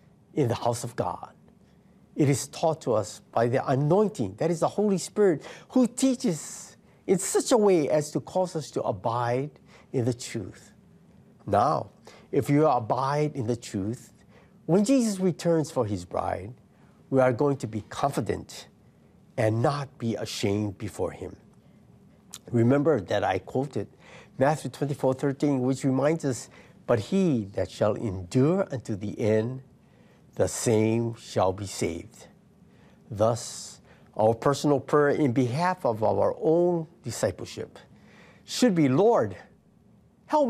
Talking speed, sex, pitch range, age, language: 140 wpm, male, 110-160 Hz, 60-79, English